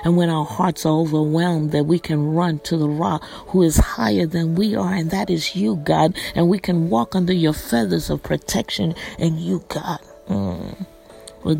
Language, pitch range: English, 155-180 Hz